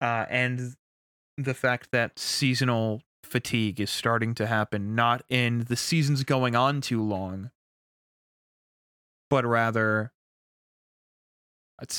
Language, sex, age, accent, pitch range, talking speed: English, male, 20-39, American, 105-130 Hz, 110 wpm